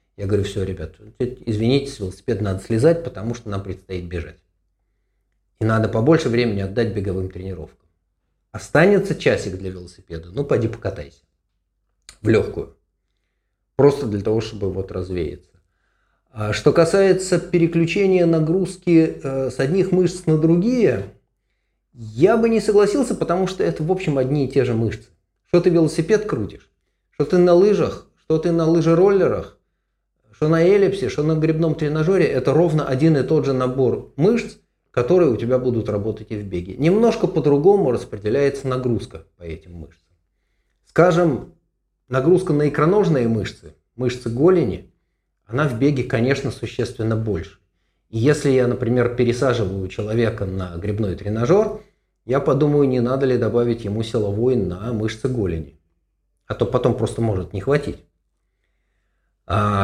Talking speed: 140 wpm